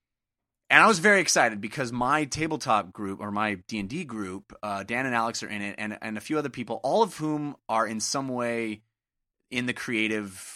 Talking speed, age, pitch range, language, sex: 205 wpm, 30-49, 100-125 Hz, English, male